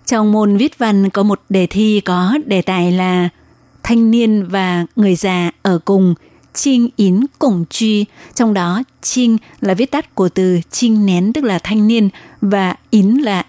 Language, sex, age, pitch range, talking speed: Vietnamese, female, 20-39, 185-225 Hz, 180 wpm